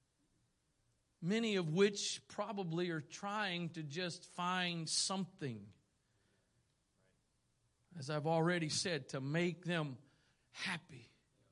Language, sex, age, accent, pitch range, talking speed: English, male, 40-59, American, 180-305 Hz, 95 wpm